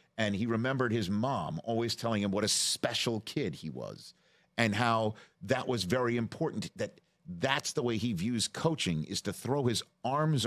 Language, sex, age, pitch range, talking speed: English, male, 50-69, 100-130 Hz, 185 wpm